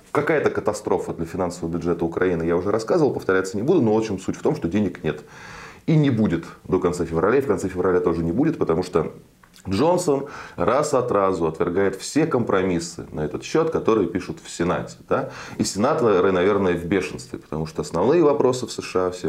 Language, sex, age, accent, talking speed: Russian, male, 20-39, native, 195 wpm